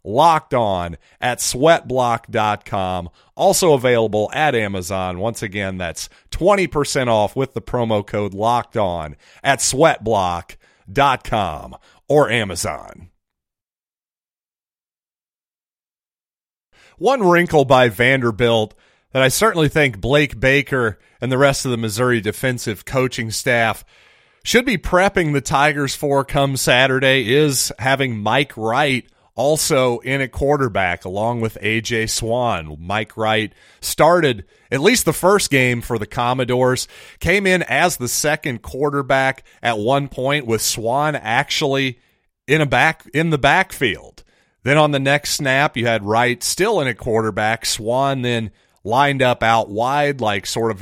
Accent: American